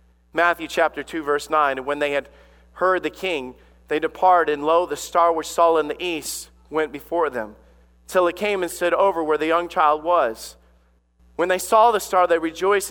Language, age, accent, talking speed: English, 40-59, American, 205 wpm